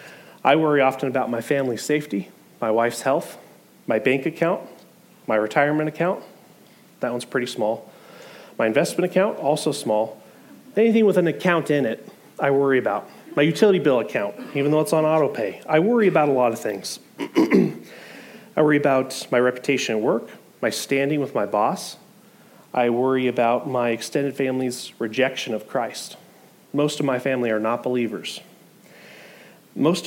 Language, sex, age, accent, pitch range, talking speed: English, male, 30-49, American, 130-170 Hz, 160 wpm